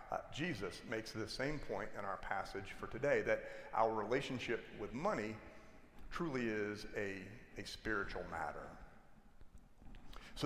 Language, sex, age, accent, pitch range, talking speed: English, male, 40-59, American, 105-135 Hz, 130 wpm